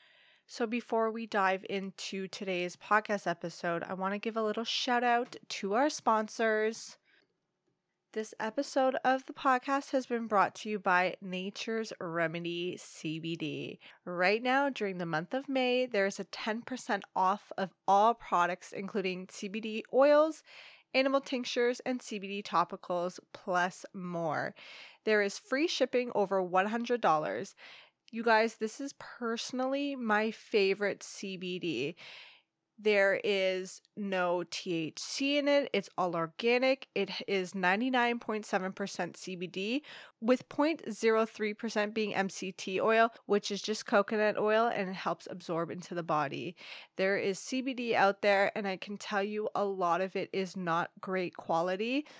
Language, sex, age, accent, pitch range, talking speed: English, female, 20-39, American, 185-235 Hz, 140 wpm